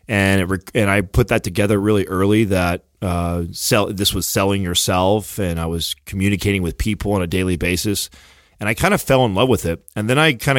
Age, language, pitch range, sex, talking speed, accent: 30-49, English, 90-110 Hz, male, 220 wpm, American